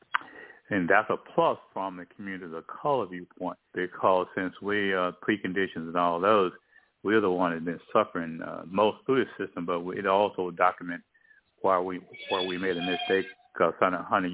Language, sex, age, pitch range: English, male, 60-79, 85-95 Hz